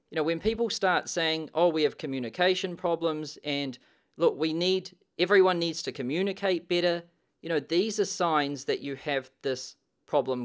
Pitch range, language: 145-190 Hz, English